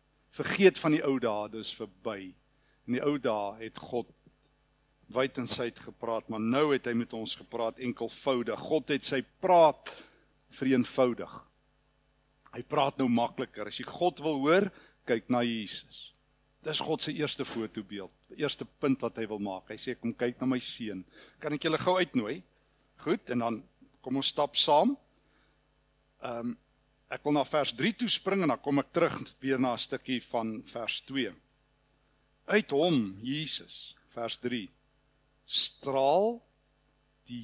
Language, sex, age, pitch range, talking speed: English, male, 60-79, 120-145 Hz, 155 wpm